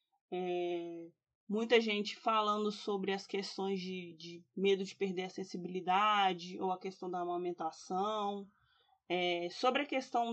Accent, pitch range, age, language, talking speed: Brazilian, 185-215 Hz, 20-39, Portuguese, 120 wpm